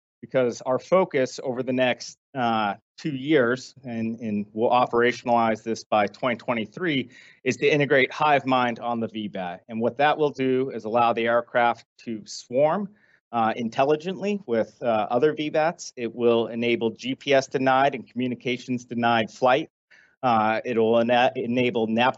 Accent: American